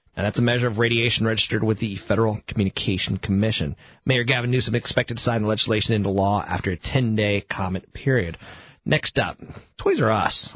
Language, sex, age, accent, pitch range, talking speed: English, male, 30-49, American, 110-140 Hz, 180 wpm